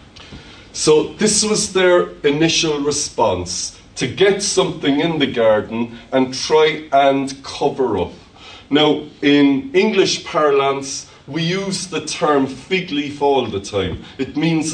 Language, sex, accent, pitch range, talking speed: English, male, Irish, 130-165 Hz, 130 wpm